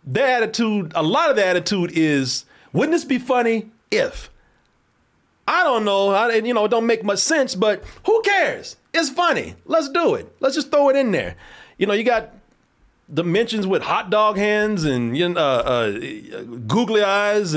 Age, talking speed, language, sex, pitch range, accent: 40-59, 175 wpm, English, male, 130-220 Hz, American